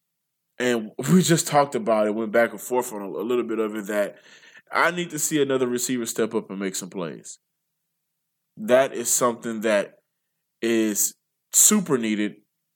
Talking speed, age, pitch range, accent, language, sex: 175 wpm, 20-39, 115-150 Hz, American, English, male